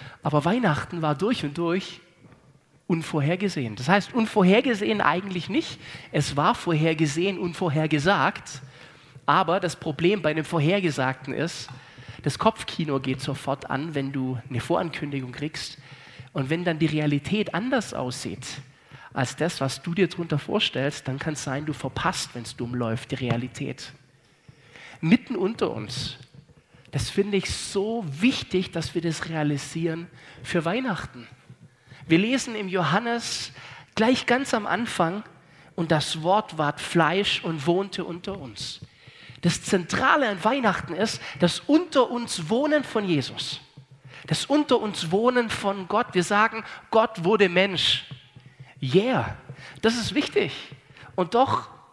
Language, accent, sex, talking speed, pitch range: German, German, male, 135 wpm, 140-200 Hz